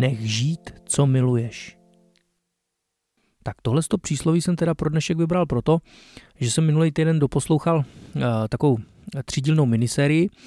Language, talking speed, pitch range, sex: Czech, 125 wpm, 125-145 Hz, male